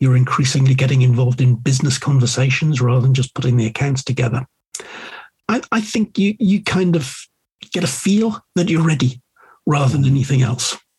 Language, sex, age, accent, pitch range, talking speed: English, male, 50-69, British, 130-150 Hz, 170 wpm